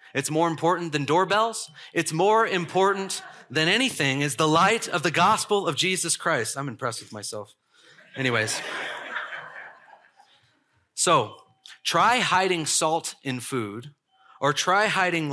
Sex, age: male, 30-49